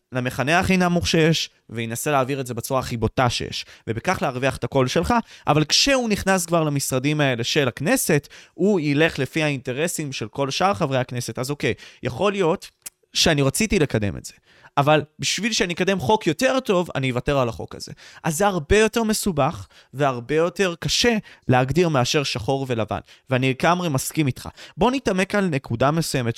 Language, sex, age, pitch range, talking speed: Hebrew, male, 20-39, 130-180 Hz, 175 wpm